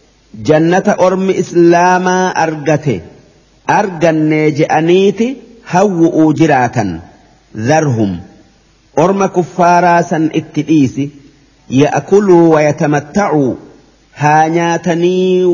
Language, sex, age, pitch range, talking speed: Arabic, male, 50-69, 145-185 Hz, 60 wpm